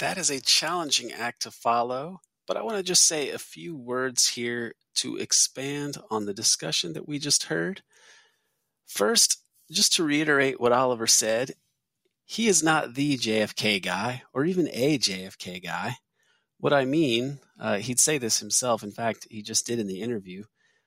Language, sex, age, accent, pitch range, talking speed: English, male, 30-49, American, 110-150 Hz, 175 wpm